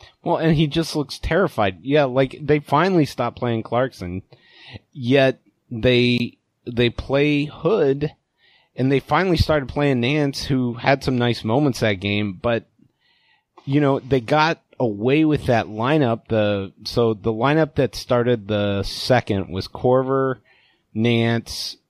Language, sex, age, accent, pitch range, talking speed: English, male, 30-49, American, 105-130 Hz, 140 wpm